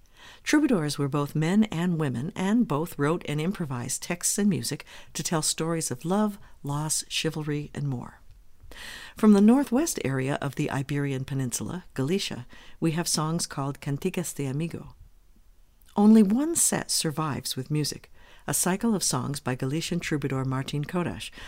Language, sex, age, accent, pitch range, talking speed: English, female, 50-69, American, 135-180 Hz, 150 wpm